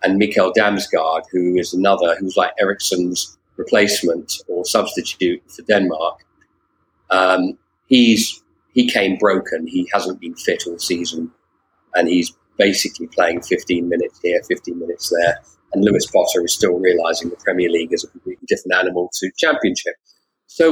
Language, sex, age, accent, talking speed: English, male, 40-59, British, 150 wpm